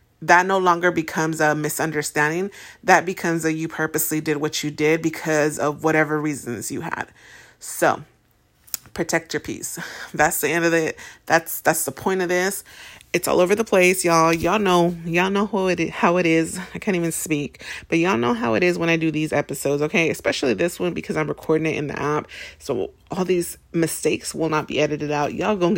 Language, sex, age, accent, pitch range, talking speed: English, female, 30-49, American, 155-185 Hz, 205 wpm